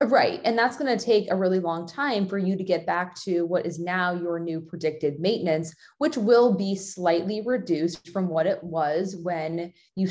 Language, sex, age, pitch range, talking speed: English, female, 20-39, 170-200 Hz, 200 wpm